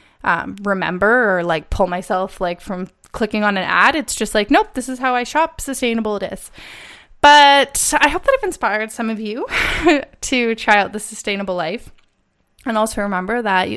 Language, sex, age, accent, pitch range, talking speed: English, female, 20-39, American, 200-240 Hz, 185 wpm